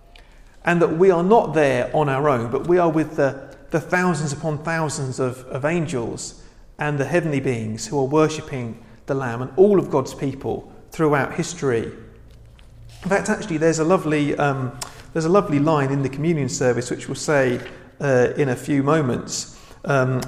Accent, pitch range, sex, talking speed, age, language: British, 135-165 Hz, male, 180 wpm, 40-59, English